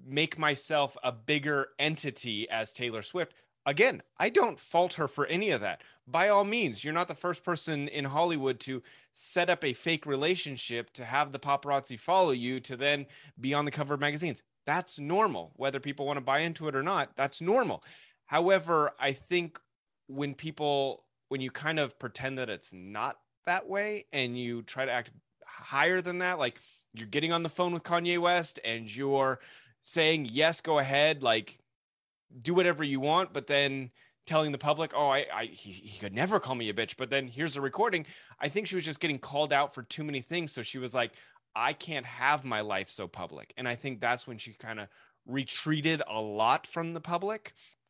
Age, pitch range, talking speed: 30-49, 125-160 Hz, 200 wpm